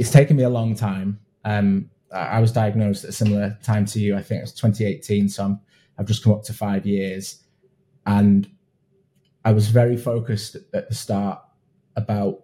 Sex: male